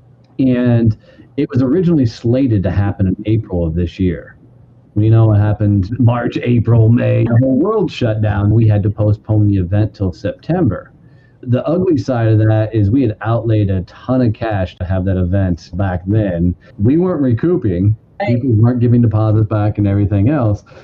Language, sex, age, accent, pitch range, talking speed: English, male, 40-59, American, 100-125 Hz, 180 wpm